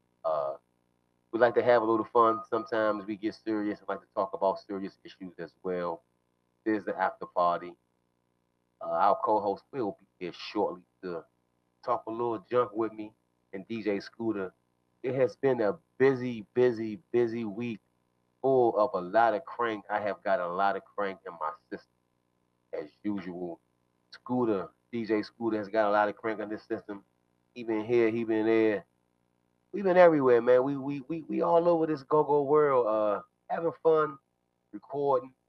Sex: male